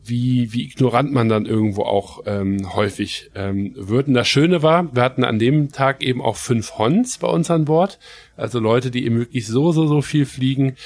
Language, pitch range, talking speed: German, 110-130 Hz, 210 wpm